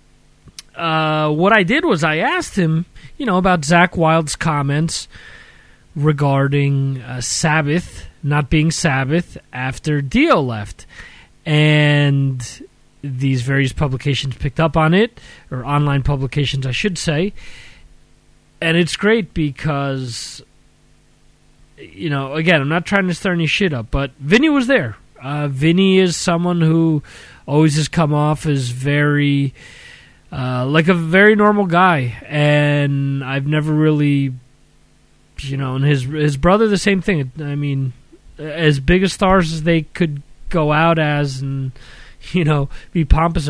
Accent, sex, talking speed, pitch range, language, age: American, male, 140 wpm, 135-170 Hz, English, 30-49